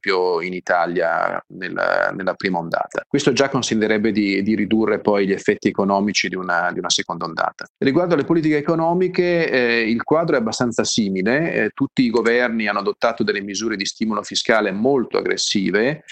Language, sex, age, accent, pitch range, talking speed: Italian, male, 40-59, native, 100-130 Hz, 170 wpm